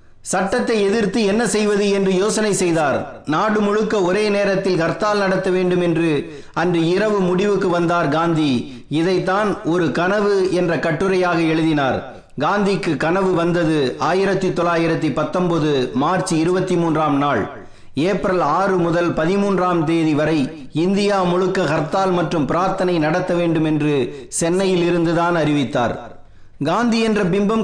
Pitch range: 170-200 Hz